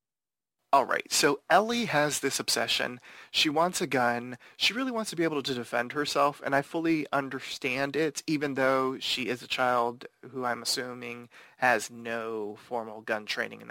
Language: English